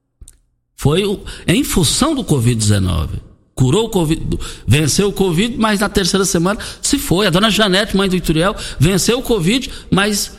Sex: male